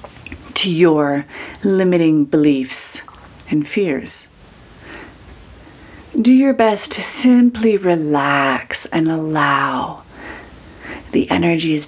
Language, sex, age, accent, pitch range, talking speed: English, female, 40-59, American, 135-180 Hz, 85 wpm